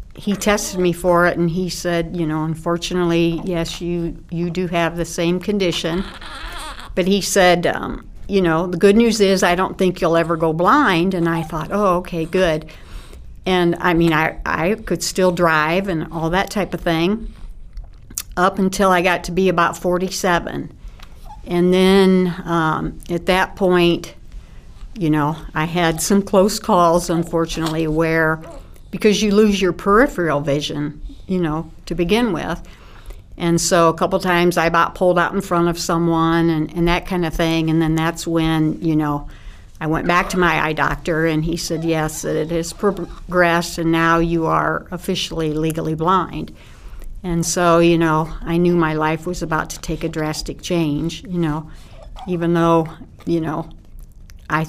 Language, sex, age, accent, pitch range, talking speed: English, female, 60-79, American, 160-180 Hz, 175 wpm